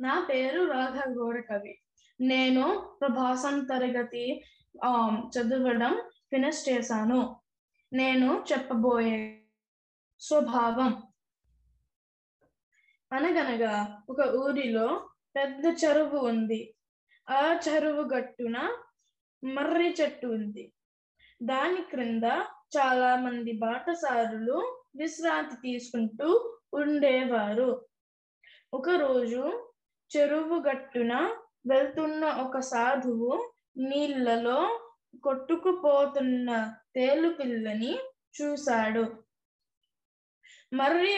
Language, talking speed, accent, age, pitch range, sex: Telugu, 65 wpm, native, 10-29, 245-300 Hz, female